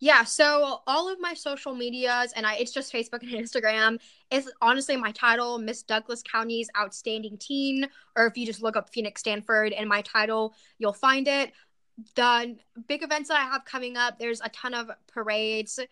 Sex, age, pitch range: female, 10-29, 220-265 Hz